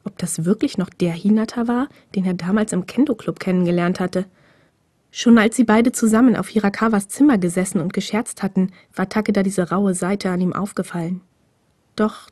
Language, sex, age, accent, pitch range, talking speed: German, female, 20-39, German, 195-255 Hz, 170 wpm